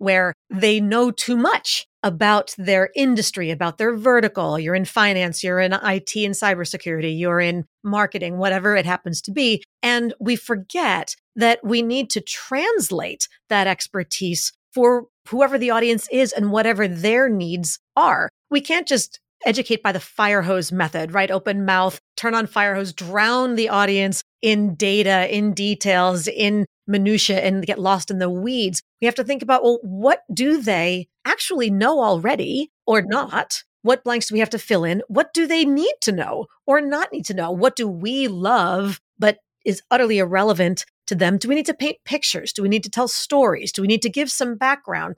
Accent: American